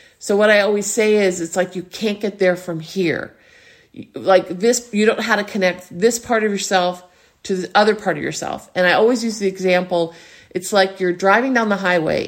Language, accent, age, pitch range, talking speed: English, American, 50-69, 175-215 Hz, 220 wpm